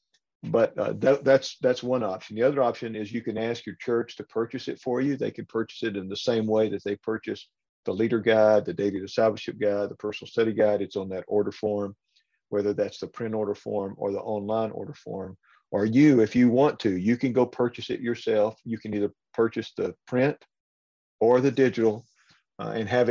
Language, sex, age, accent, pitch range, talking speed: English, male, 50-69, American, 105-120 Hz, 215 wpm